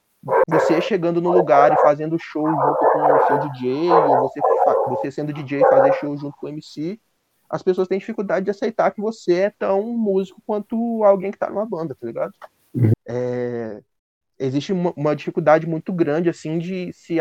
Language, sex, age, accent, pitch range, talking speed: Portuguese, male, 20-39, Brazilian, 135-185 Hz, 185 wpm